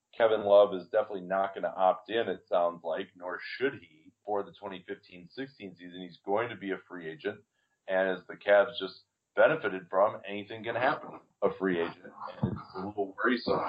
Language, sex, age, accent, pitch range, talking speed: English, male, 40-59, American, 90-105 Hz, 190 wpm